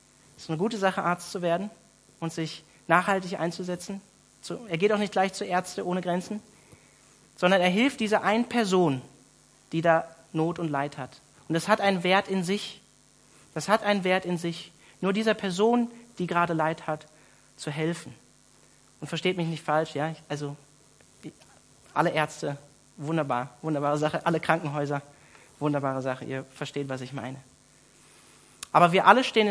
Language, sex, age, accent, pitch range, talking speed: German, male, 40-59, German, 150-195 Hz, 165 wpm